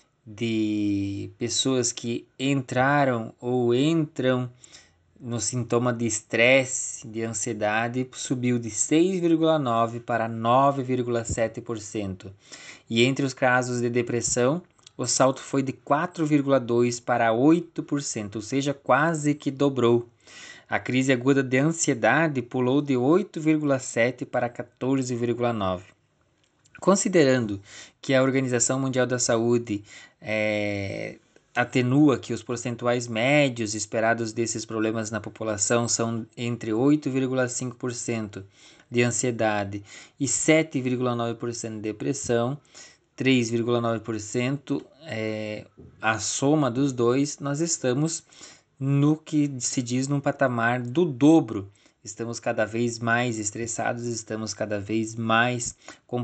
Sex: male